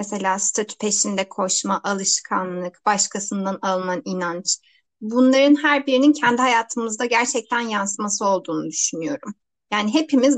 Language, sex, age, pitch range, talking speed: Turkish, female, 30-49, 200-280 Hz, 110 wpm